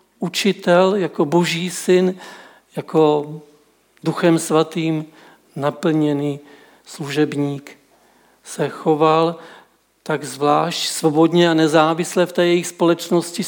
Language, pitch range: Czech, 150-175 Hz